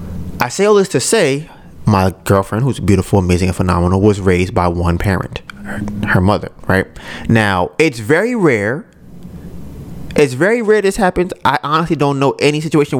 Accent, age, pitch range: American, 20-39, 115-190 Hz